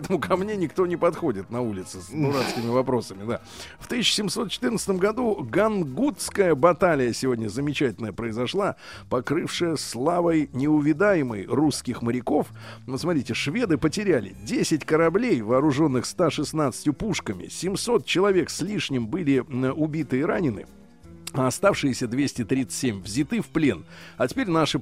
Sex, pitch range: male, 115-160 Hz